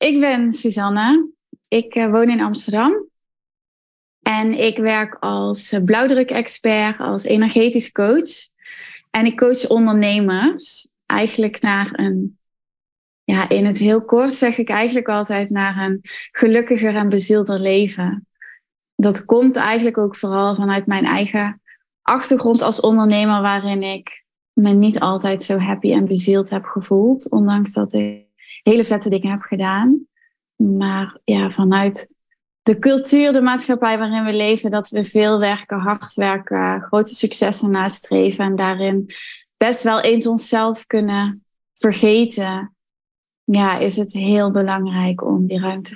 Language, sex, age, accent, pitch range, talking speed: Dutch, female, 20-39, Dutch, 195-230 Hz, 135 wpm